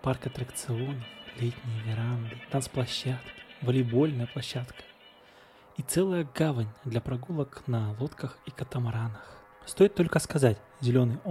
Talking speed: 105 wpm